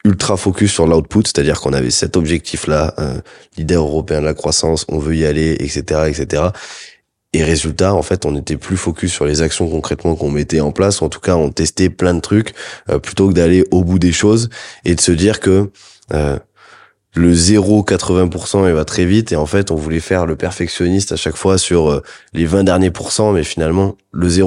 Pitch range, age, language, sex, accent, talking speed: 75-90 Hz, 20-39, French, male, French, 205 wpm